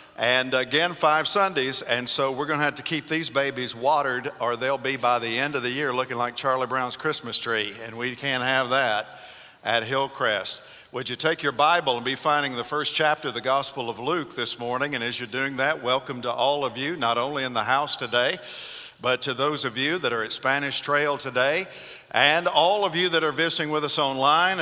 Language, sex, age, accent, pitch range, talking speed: English, male, 50-69, American, 130-155 Hz, 225 wpm